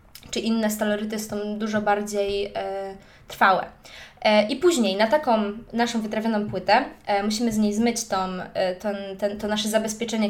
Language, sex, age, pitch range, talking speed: Polish, female, 20-39, 205-250 Hz, 165 wpm